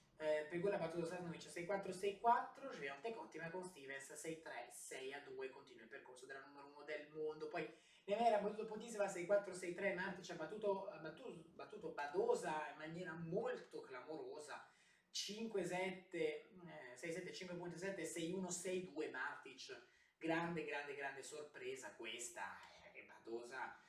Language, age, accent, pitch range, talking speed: Italian, 20-39, native, 165-225 Hz, 130 wpm